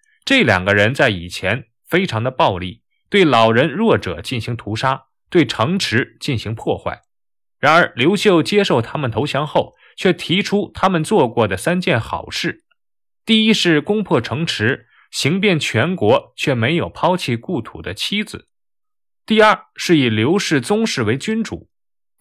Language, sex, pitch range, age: Chinese, male, 115-190 Hz, 20-39